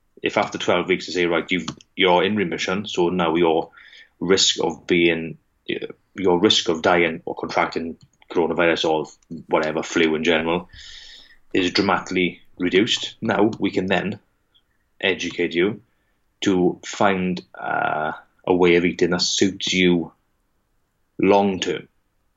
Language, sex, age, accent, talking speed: English, male, 30-49, British, 135 wpm